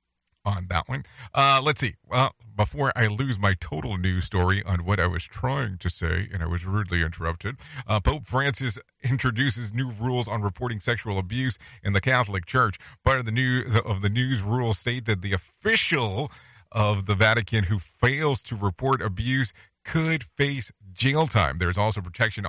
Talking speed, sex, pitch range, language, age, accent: 180 wpm, male, 95-125 Hz, English, 40-59, American